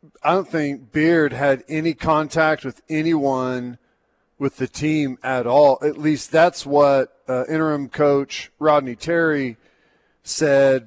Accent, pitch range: American, 130-155 Hz